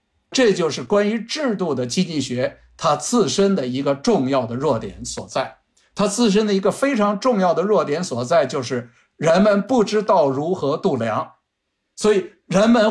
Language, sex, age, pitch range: Chinese, male, 50-69, 150-215 Hz